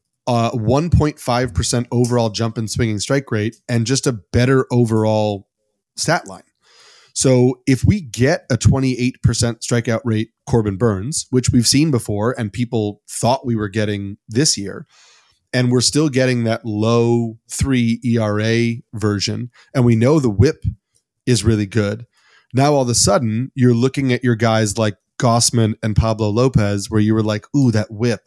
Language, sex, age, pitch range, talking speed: English, male, 30-49, 110-125 Hz, 160 wpm